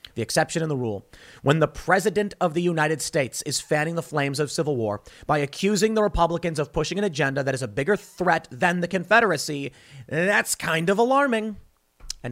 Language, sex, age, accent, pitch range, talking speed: English, male, 30-49, American, 120-165 Hz, 195 wpm